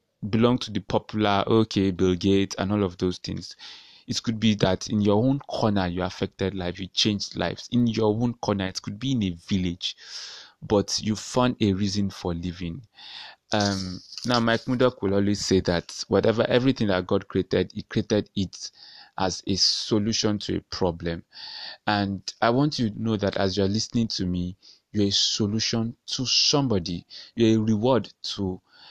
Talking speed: 180 wpm